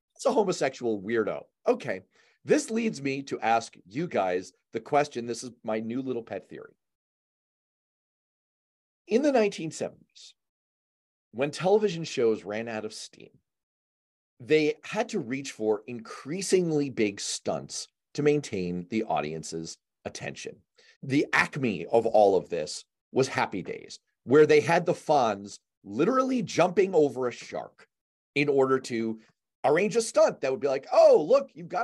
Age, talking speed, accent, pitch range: 40-59, 145 wpm, American, 110-190 Hz